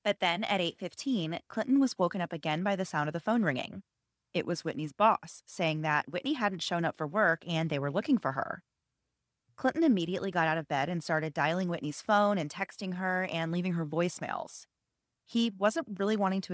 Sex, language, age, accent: female, English, 30-49, American